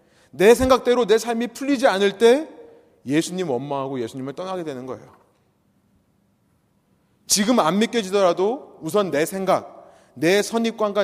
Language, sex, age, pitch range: Korean, male, 30-49, 140-210 Hz